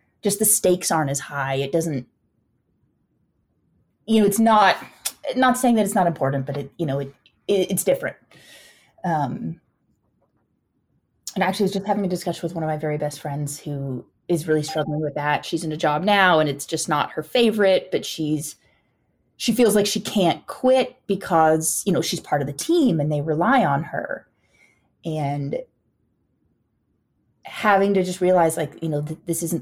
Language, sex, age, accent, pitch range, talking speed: English, female, 20-39, American, 145-190 Hz, 185 wpm